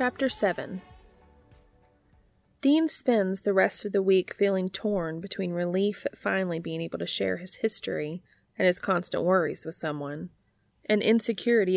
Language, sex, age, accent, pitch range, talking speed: English, female, 30-49, American, 170-205 Hz, 150 wpm